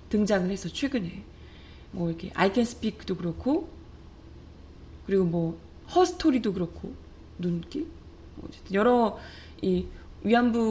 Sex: female